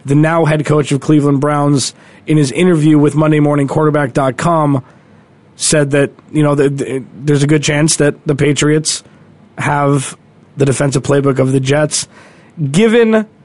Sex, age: male, 20-39